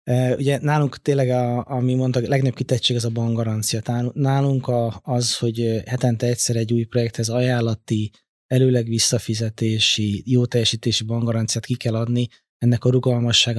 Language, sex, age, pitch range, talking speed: Hungarian, male, 20-39, 115-125 Hz, 140 wpm